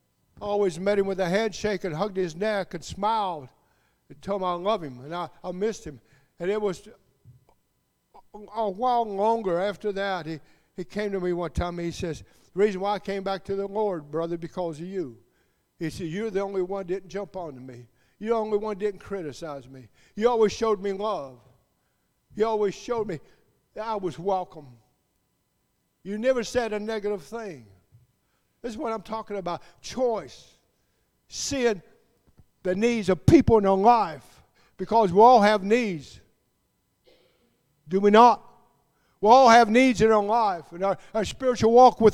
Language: English